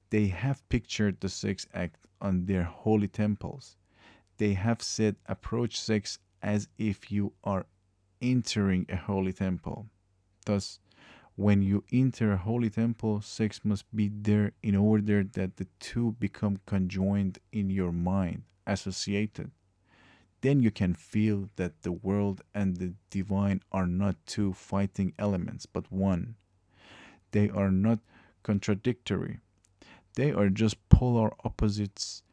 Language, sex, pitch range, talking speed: English, male, 95-110 Hz, 130 wpm